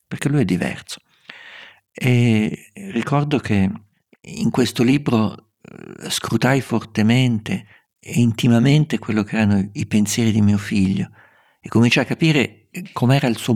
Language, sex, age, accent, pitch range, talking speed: Italian, male, 50-69, native, 105-135 Hz, 130 wpm